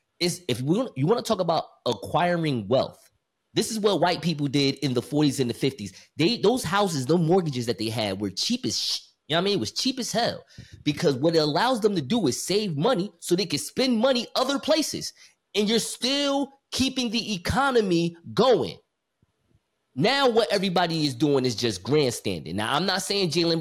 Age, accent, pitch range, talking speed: 20-39, American, 130-180 Hz, 205 wpm